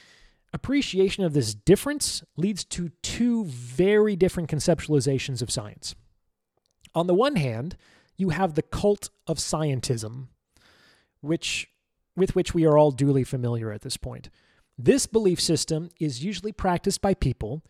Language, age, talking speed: English, 30-49, 140 wpm